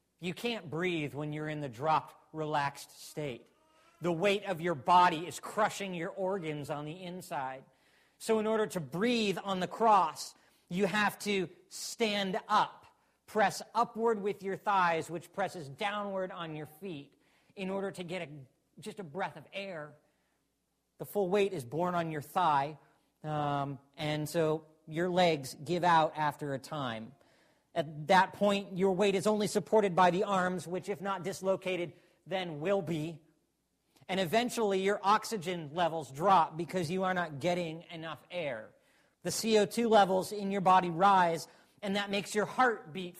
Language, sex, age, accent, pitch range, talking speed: English, male, 40-59, American, 155-195 Hz, 165 wpm